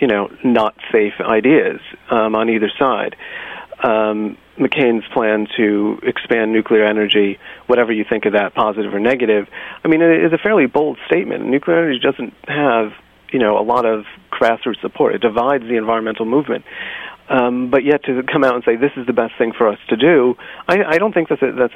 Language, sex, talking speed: English, male, 190 wpm